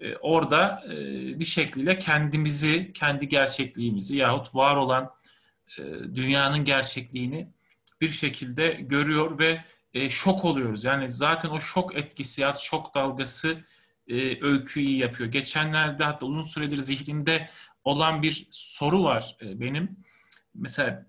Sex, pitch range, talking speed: male, 135-165 Hz, 110 wpm